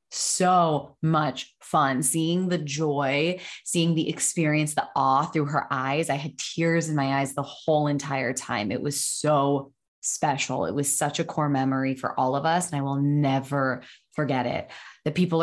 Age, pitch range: 20-39, 135-165 Hz